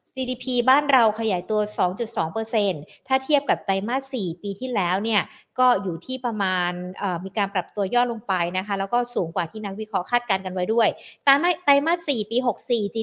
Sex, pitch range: female, 200-260 Hz